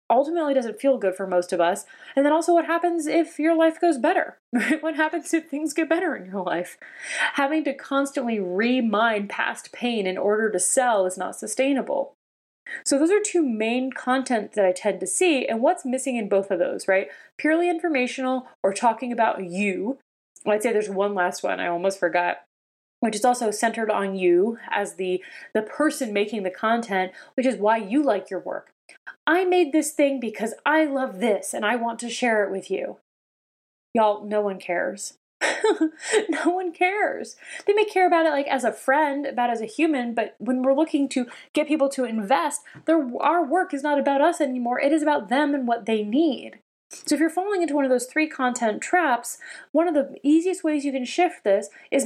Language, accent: English, American